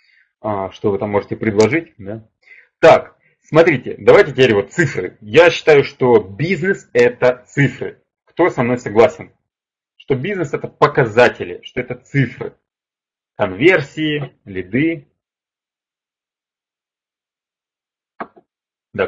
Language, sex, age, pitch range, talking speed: Russian, male, 30-49, 110-145 Hz, 100 wpm